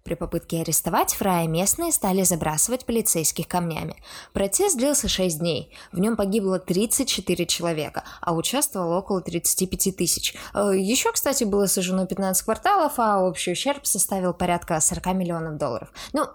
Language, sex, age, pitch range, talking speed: Russian, female, 20-39, 165-220 Hz, 140 wpm